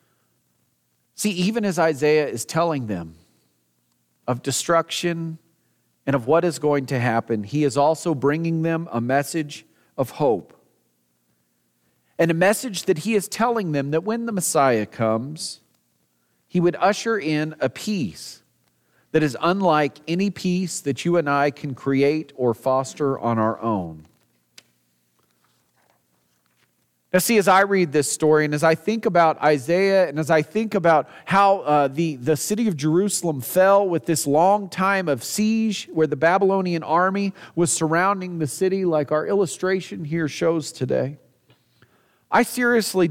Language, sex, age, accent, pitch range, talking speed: English, male, 40-59, American, 140-185 Hz, 150 wpm